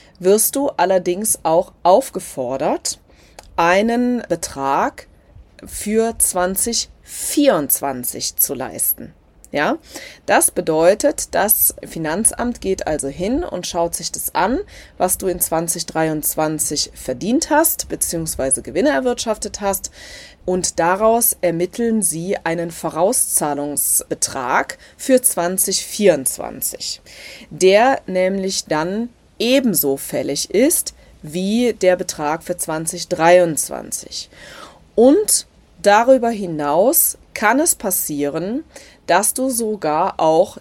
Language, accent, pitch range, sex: German, German, 165-225 Hz, female